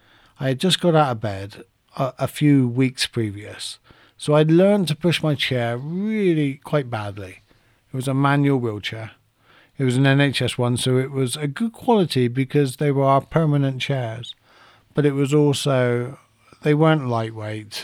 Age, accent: 50-69, British